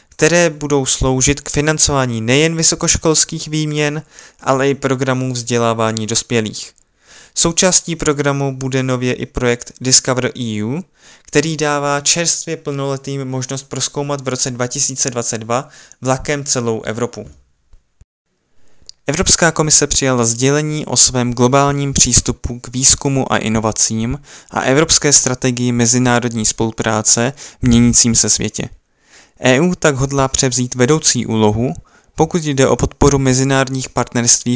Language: Czech